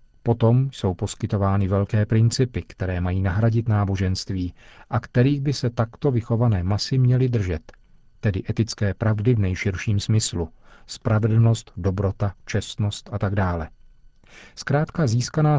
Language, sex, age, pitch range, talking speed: Czech, male, 40-59, 100-120 Hz, 125 wpm